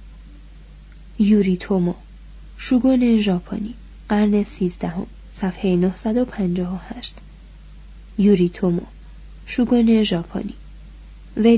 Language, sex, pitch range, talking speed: Persian, female, 185-230 Hz, 80 wpm